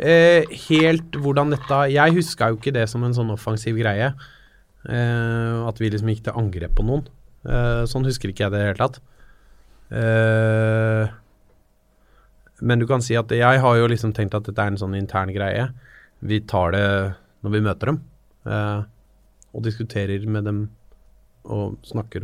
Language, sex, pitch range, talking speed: English, male, 100-120 Hz, 180 wpm